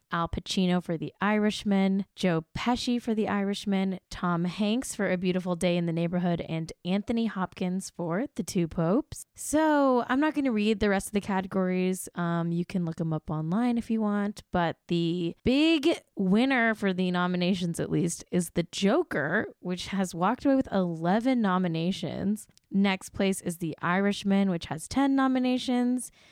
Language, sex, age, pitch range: English, female, 10-29, 170-215 Hz